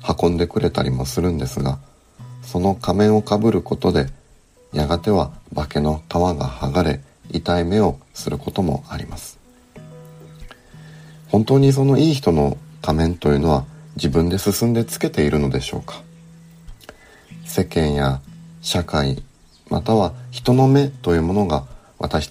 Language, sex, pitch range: Japanese, male, 75-125 Hz